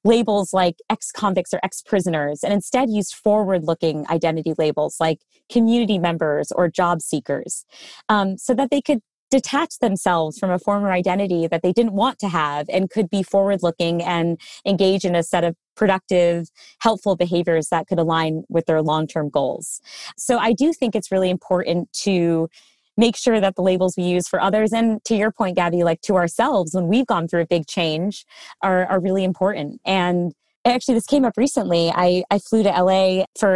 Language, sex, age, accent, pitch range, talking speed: English, female, 30-49, American, 175-220 Hz, 180 wpm